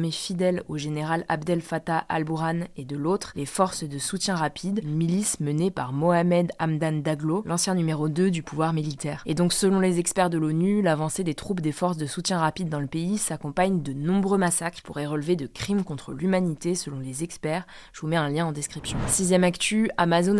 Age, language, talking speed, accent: 20-39, French, 205 wpm, French